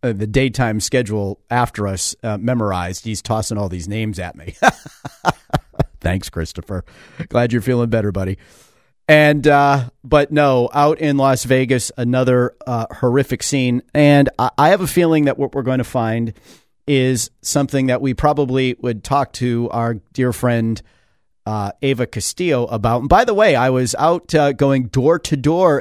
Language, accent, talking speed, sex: English, American, 165 wpm, male